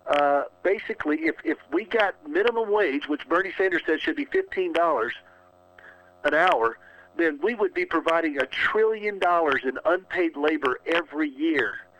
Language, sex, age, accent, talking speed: English, male, 50-69, American, 150 wpm